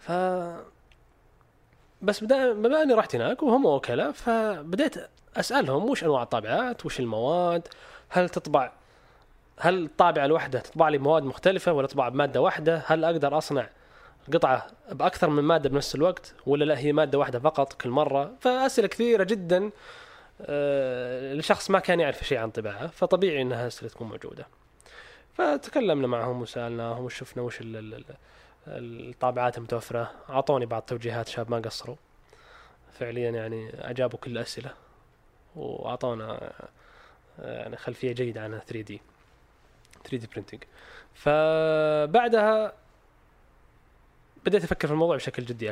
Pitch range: 120-180 Hz